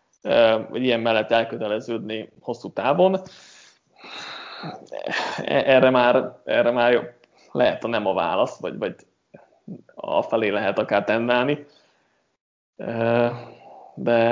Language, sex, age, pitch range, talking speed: Hungarian, male, 20-39, 115-130 Hz, 100 wpm